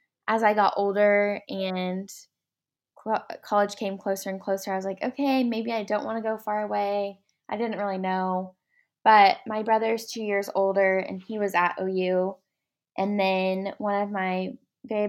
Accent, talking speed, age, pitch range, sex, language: American, 170 wpm, 10-29, 185-210 Hz, female, English